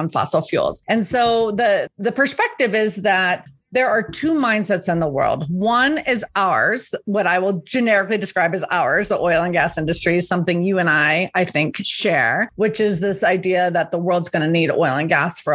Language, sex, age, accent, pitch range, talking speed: English, female, 30-49, American, 180-225 Hz, 205 wpm